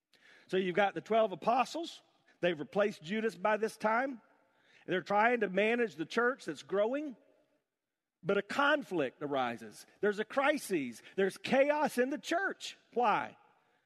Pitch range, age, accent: 165-250 Hz, 50-69, American